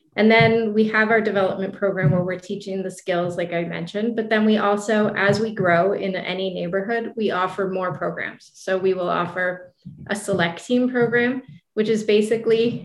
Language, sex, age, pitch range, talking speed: English, female, 30-49, 185-215 Hz, 185 wpm